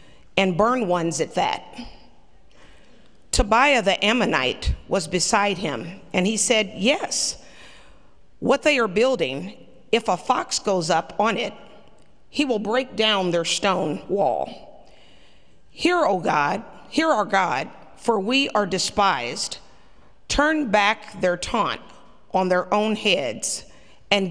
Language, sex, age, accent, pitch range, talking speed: English, female, 50-69, American, 180-230 Hz, 130 wpm